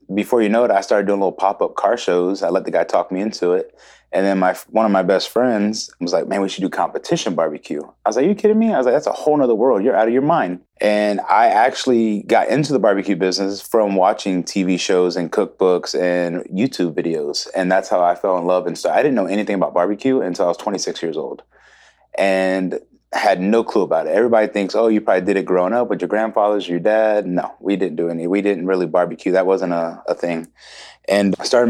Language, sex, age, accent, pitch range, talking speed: English, male, 30-49, American, 90-110 Hz, 245 wpm